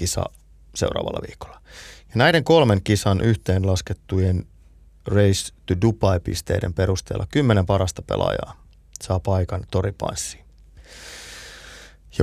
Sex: male